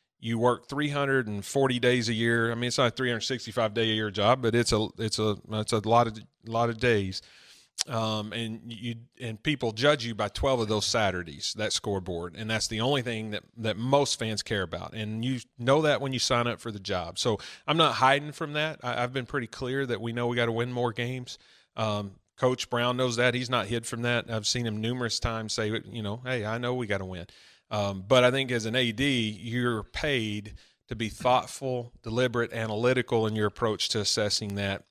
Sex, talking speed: male, 220 wpm